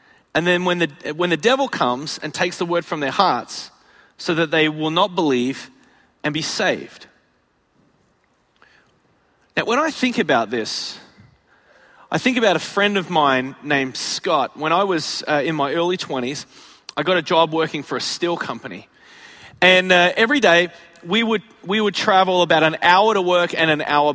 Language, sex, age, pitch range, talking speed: English, male, 30-49, 150-205 Hz, 180 wpm